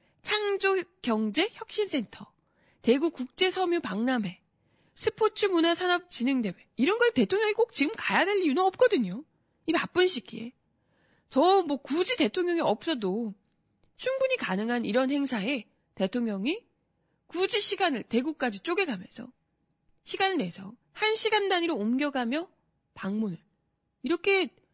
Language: Korean